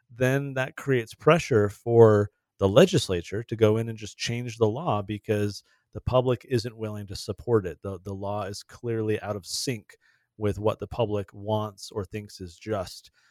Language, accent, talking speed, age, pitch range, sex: English, American, 180 wpm, 30-49, 100-115 Hz, male